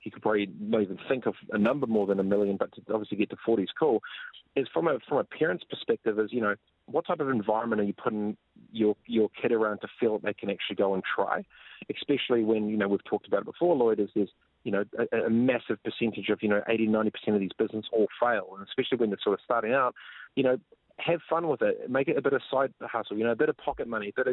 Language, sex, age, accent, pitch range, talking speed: English, male, 30-49, Australian, 105-125 Hz, 270 wpm